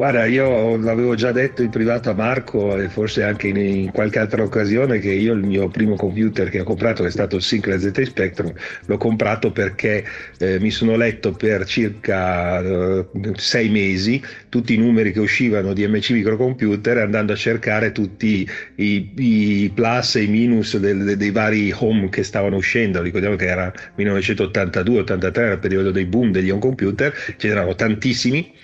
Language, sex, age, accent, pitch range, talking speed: Italian, male, 40-59, native, 100-115 Hz, 170 wpm